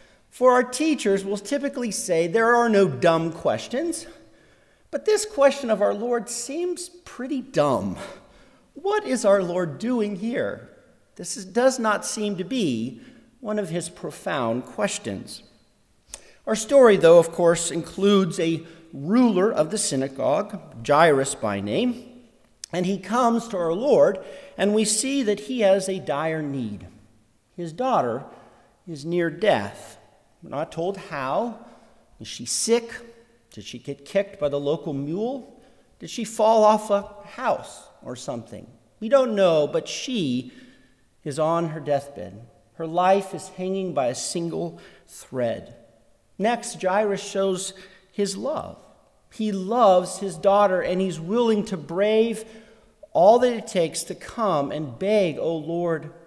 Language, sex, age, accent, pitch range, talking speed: English, male, 50-69, American, 165-235 Hz, 145 wpm